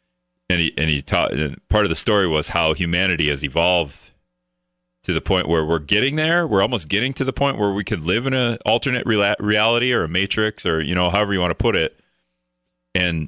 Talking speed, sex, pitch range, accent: 210 wpm, male, 75-95 Hz, American